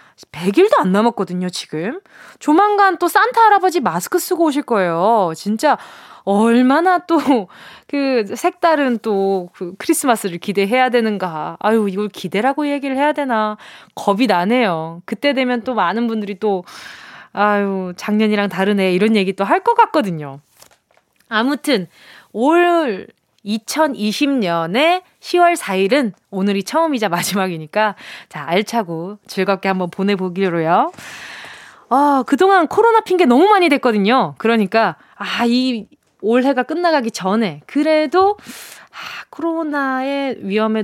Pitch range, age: 200-330 Hz, 20-39